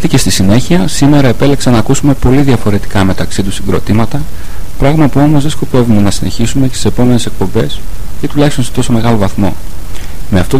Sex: male